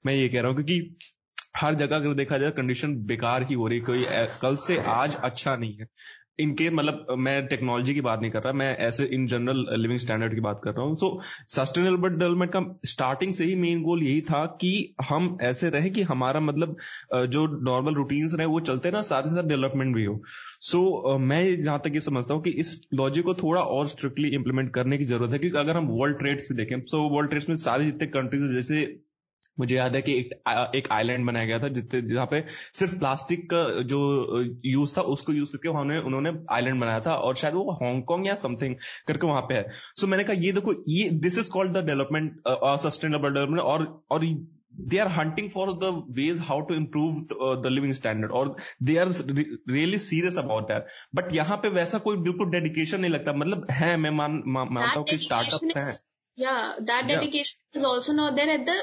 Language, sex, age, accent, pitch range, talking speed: Hindi, male, 20-39, native, 130-170 Hz, 180 wpm